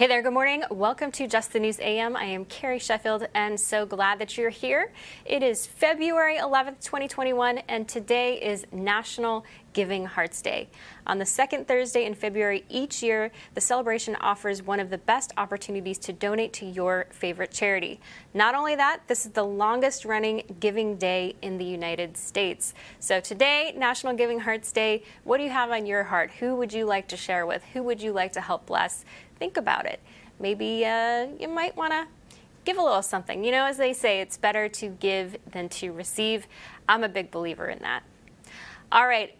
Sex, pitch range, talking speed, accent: female, 205-250 Hz, 190 wpm, American